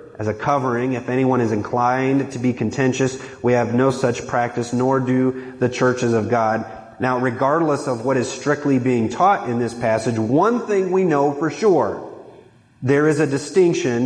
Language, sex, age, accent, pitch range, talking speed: English, male, 30-49, American, 120-145 Hz, 180 wpm